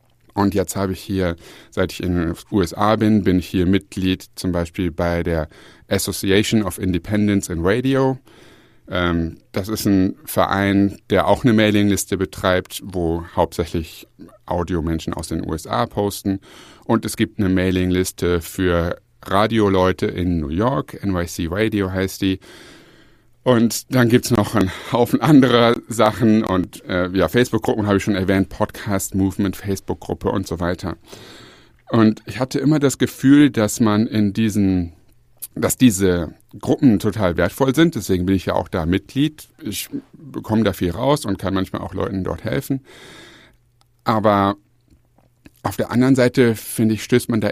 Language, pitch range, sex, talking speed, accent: German, 95-115 Hz, male, 155 wpm, German